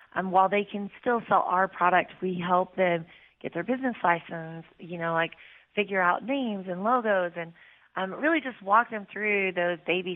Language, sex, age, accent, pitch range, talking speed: English, female, 30-49, American, 185-245 Hz, 190 wpm